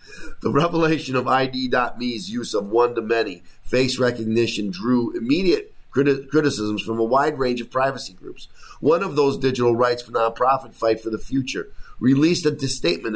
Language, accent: English, American